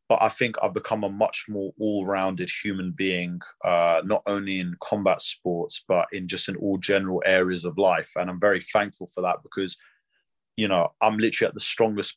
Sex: male